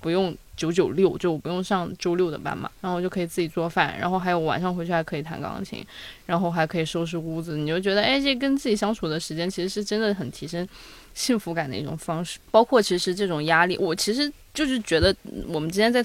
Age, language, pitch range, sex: 10-29, Chinese, 160-200 Hz, female